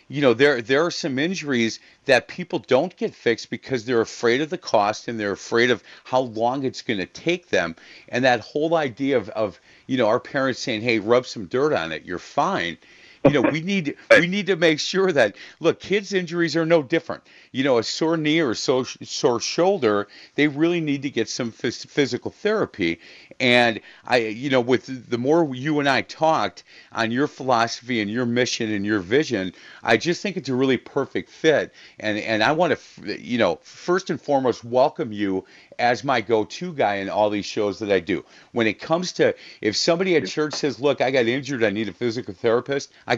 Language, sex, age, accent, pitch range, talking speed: English, male, 40-59, American, 115-160 Hz, 215 wpm